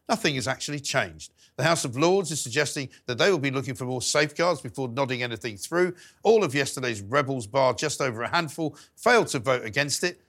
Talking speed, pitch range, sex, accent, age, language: 210 wpm, 125-175 Hz, male, British, 50-69, English